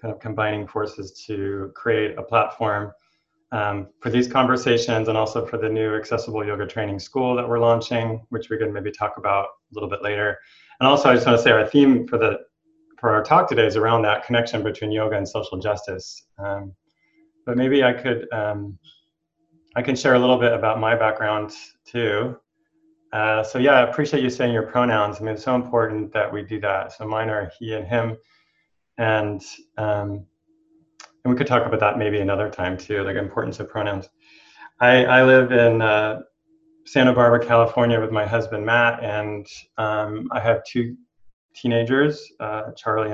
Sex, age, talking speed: male, 30-49, 185 wpm